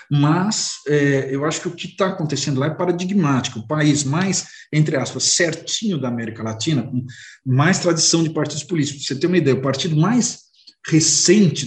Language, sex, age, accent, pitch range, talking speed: Portuguese, male, 50-69, Brazilian, 130-155 Hz, 180 wpm